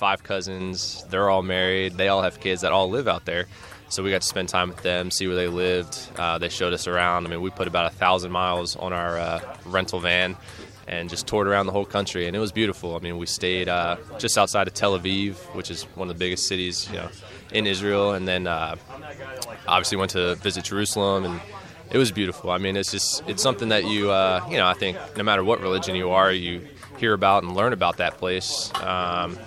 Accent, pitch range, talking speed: American, 90-100 Hz, 230 wpm